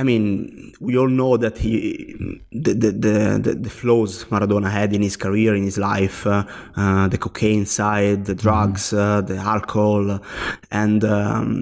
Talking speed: 160 wpm